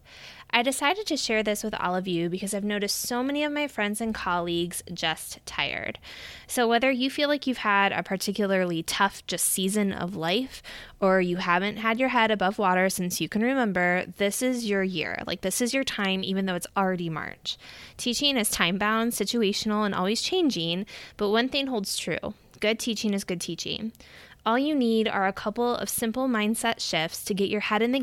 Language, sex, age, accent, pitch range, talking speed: English, female, 10-29, American, 180-230 Hz, 200 wpm